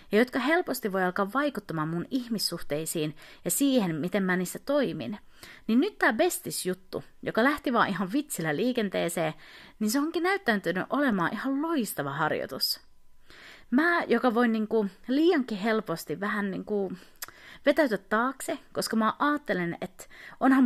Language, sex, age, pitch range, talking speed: Finnish, female, 30-49, 190-280 Hz, 135 wpm